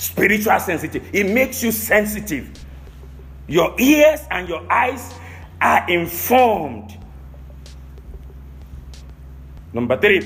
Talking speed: 90 wpm